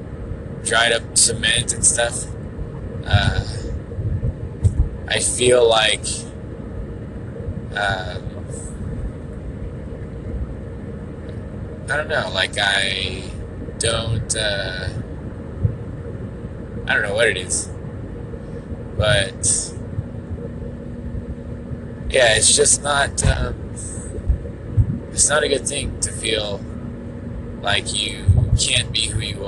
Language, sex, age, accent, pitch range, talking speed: English, male, 20-39, American, 100-115 Hz, 85 wpm